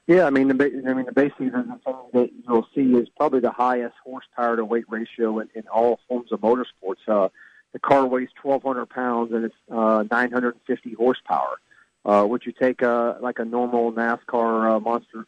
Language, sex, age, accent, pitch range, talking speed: English, male, 40-59, American, 115-130 Hz, 205 wpm